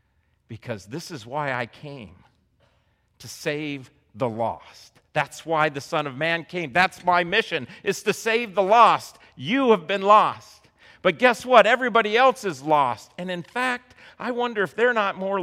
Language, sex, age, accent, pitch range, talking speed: English, male, 50-69, American, 135-210 Hz, 175 wpm